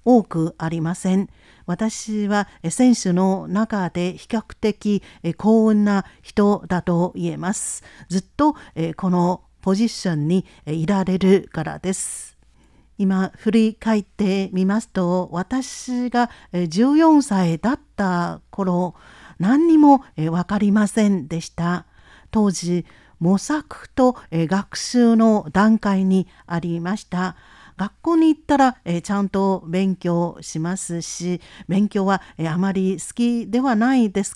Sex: female